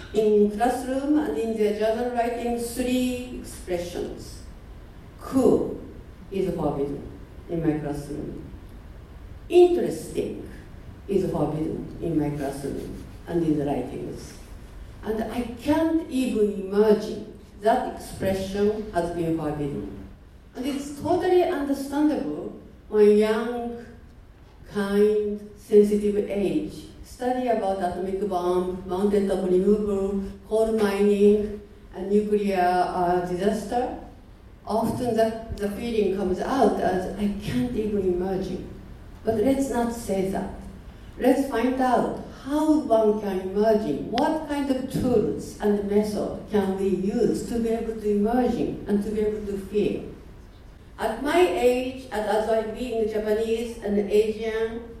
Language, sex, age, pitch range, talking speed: English, female, 60-79, 190-235 Hz, 120 wpm